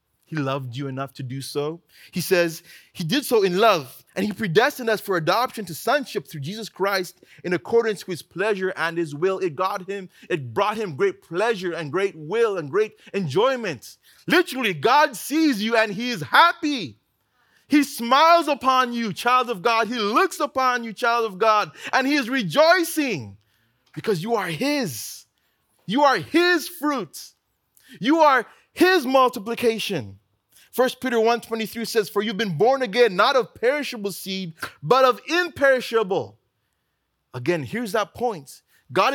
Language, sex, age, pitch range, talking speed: English, male, 30-49, 165-255 Hz, 165 wpm